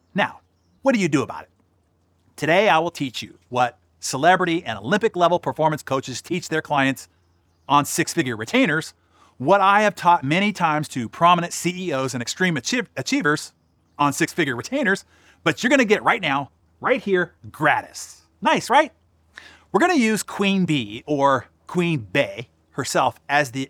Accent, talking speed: American, 155 wpm